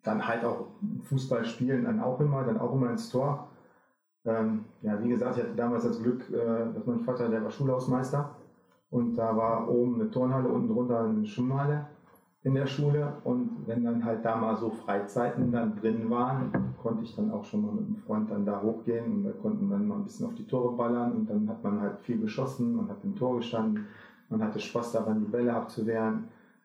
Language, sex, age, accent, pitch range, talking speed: German, male, 40-59, German, 115-145 Hz, 210 wpm